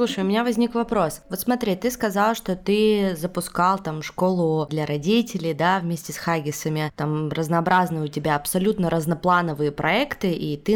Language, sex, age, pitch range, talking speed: Russian, female, 20-39, 160-200 Hz, 160 wpm